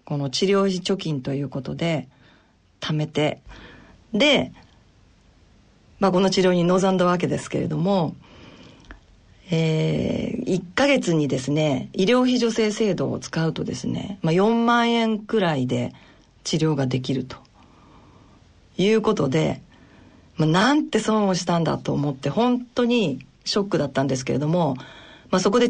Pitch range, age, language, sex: 150-215 Hz, 40-59, Japanese, female